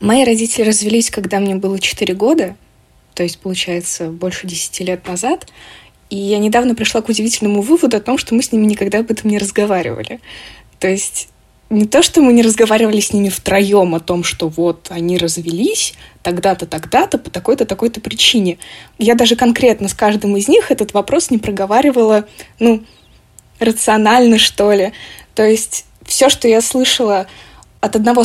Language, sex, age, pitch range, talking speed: Russian, female, 20-39, 200-250 Hz, 170 wpm